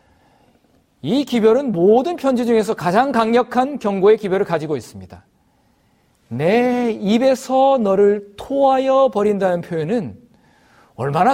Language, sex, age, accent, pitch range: Korean, male, 40-59, native, 165-240 Hz